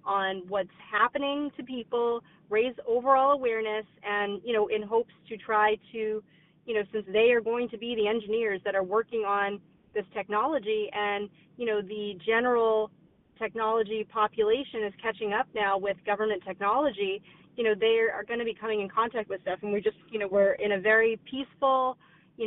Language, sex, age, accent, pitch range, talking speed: English, female, 30-49, American, 200-225 Hz, 185 wpm